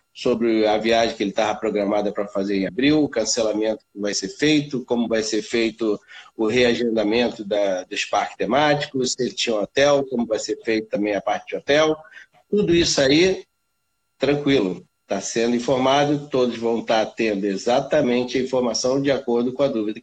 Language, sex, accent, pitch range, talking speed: Portuguese, male, Brazilian, 120-145 Hz, 180 wpm